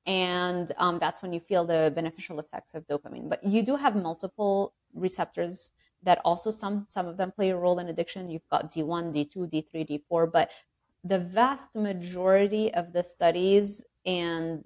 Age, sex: 20-39, female